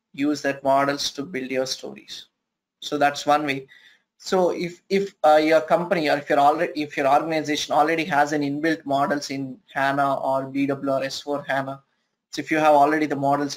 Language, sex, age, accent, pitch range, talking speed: English, male, 20-39, Indian, 135-155 Hz, 190 wpm